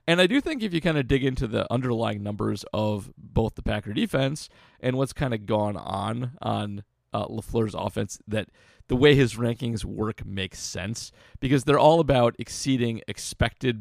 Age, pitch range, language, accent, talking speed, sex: 30-49, 100-130 Hz, English, American, 185 wpm, male